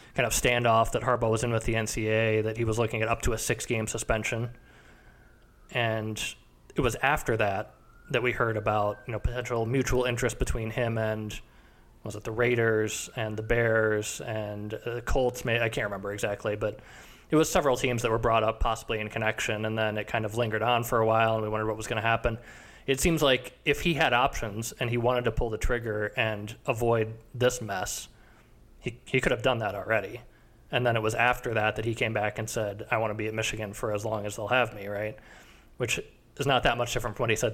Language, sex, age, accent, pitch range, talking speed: English, male, 20-39, American, 110-120 Hz, 230 wpm